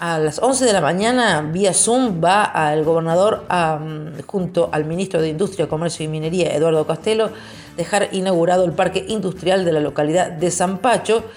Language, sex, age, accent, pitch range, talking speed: Spanish, female, 40-59, Spanish, 160-205 Hz, 175 wpm